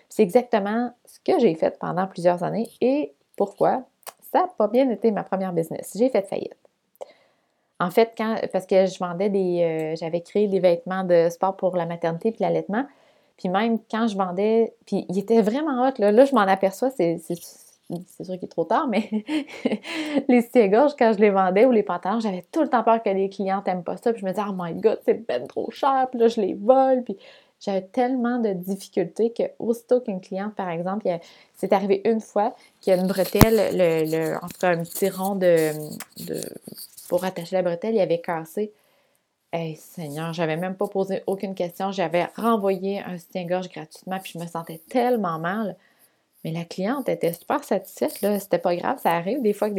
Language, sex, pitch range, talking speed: French, female, 180-230 Hz, 210 wpm